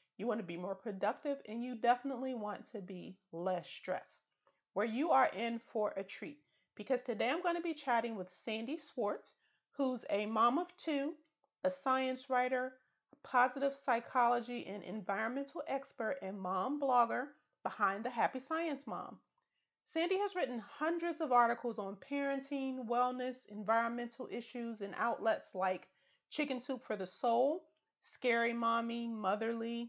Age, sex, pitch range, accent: 30-49, female, 220-275 Hz, American